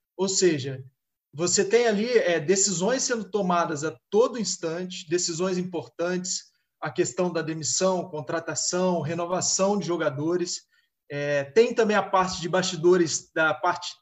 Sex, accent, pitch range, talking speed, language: male, Brazilian, 165-205 Hz, 125 wpm, Portuguese